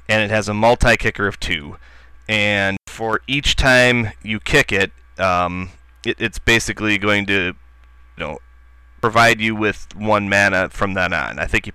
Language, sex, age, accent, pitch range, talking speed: English, male, 30-49, American, 90-110 Hz, 175 wpm